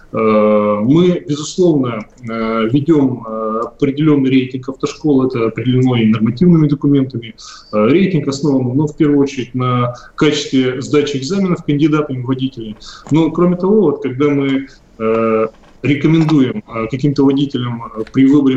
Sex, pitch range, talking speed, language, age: male, 120-150 Hz, 115 wpm, Russian, 20-39